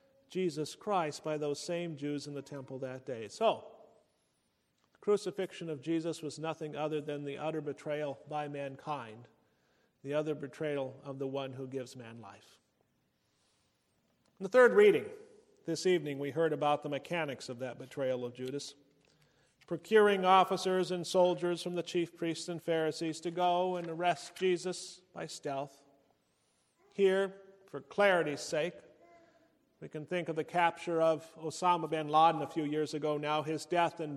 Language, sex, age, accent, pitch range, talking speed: English, male, 40-59, American, 145-180 Hz, 160 wpm